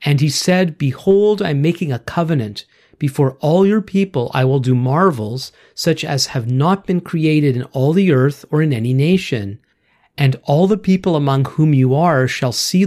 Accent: American